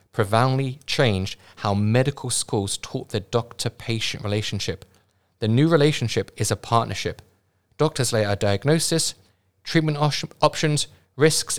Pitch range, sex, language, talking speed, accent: 100-135 Hz, male, English, 125 wpm, British